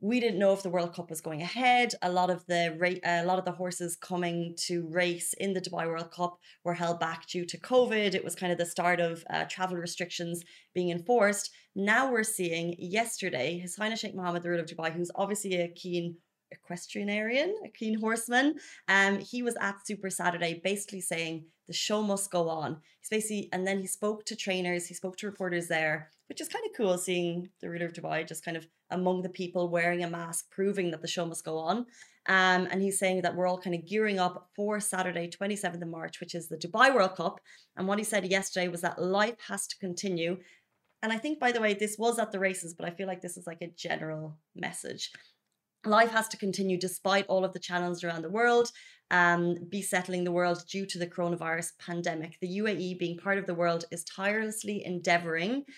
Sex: female